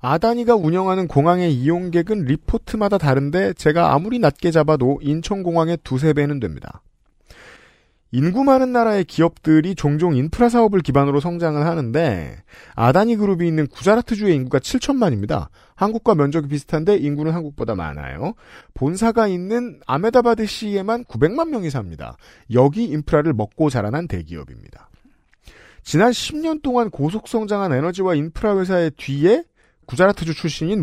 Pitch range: 145-215 Hz